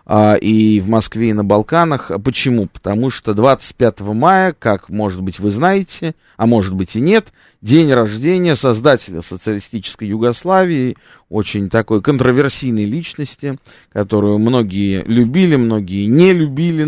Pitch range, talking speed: 105-150 Hz, 130 wpm